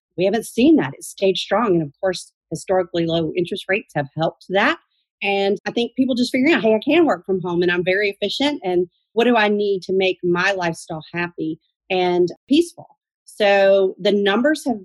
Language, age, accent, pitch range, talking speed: English, 40-59, American, 185-225 Hz, 200 wpm